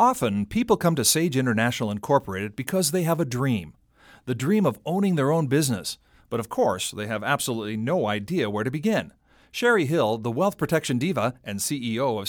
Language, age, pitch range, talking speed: English, 40-59, 120-170 Hz, 190 wpm